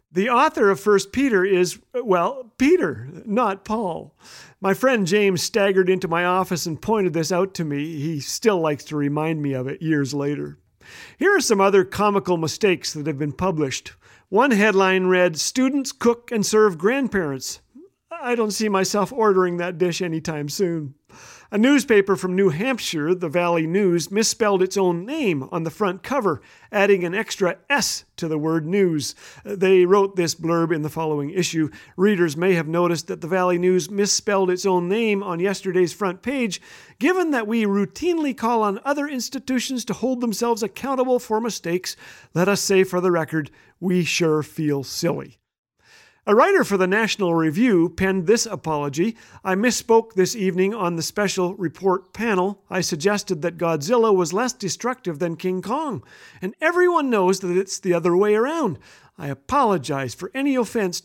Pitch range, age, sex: 170-215 Hz, 50-69, male